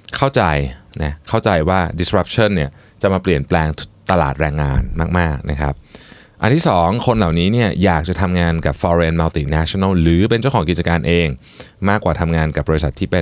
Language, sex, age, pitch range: Thai, male, 20-39, 75-105 Hz